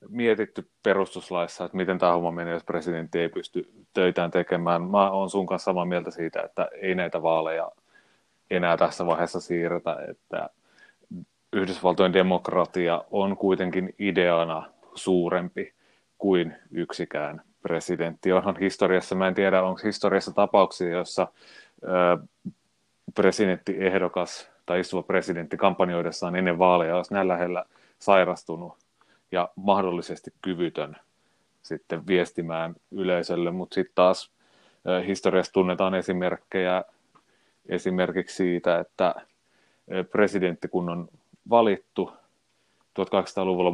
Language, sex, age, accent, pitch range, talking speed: Finnish, male, 30-49, native, 85-95 Hz, 105 wpm